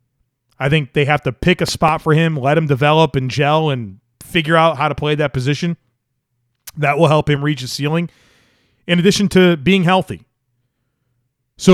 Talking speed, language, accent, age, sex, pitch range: 185 wpm, English, American, 30-49, male, 125-170 Hz